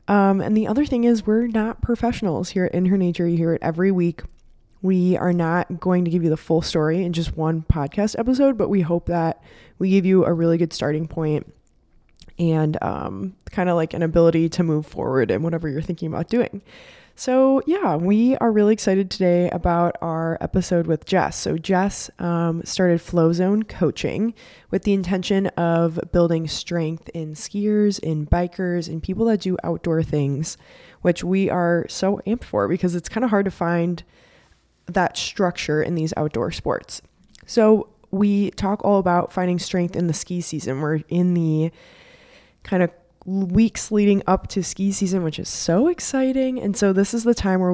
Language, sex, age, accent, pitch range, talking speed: English, female, 20-39, American, 165-195 Hz, 185 wpm